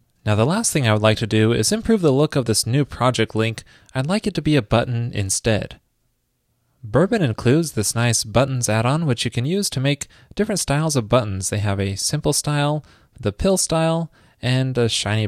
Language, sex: English, male